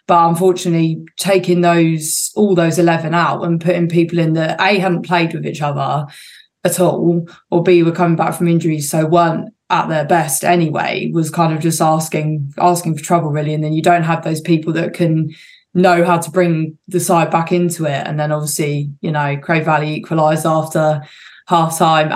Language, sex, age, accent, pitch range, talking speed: English, female, 20-39, British, 160-175 Hz, 190 wpm